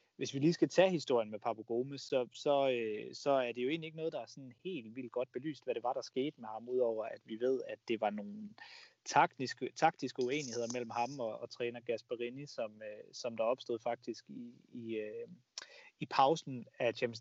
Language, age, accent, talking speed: Danish, 30-49, native, 200 wpm